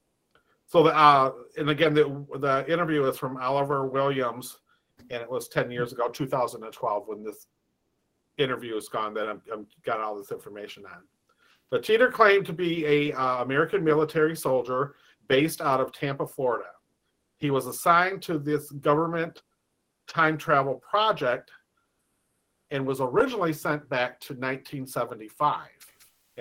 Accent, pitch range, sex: American, 135-175 Hz, male